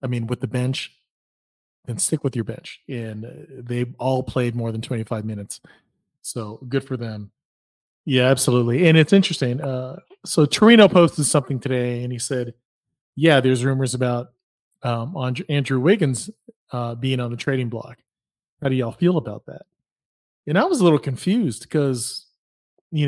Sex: male